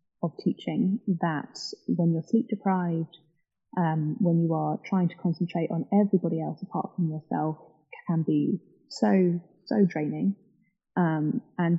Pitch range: 155-180 Hz